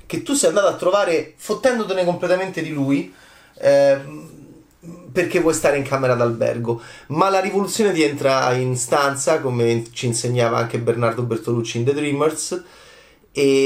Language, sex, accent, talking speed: Italian, male, native, 150 wpm